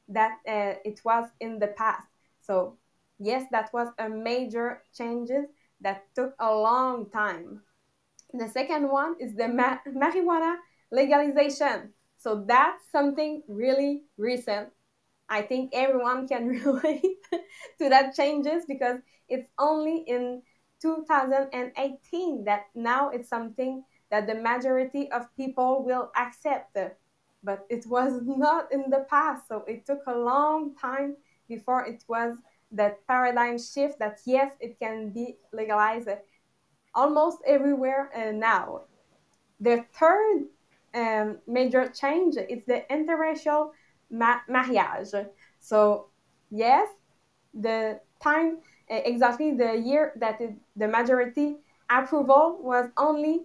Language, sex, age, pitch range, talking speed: English, female, 20-39, 230-285 Hz, 120 wpm